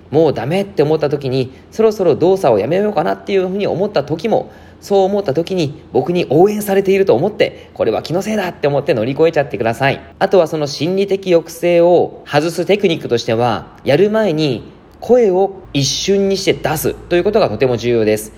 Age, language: 20-39, Japanese